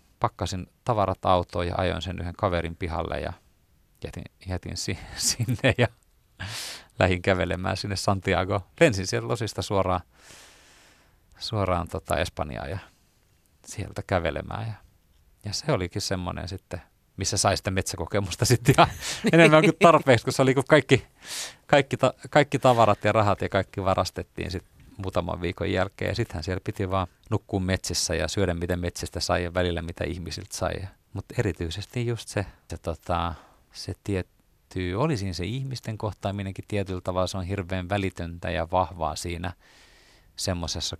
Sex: male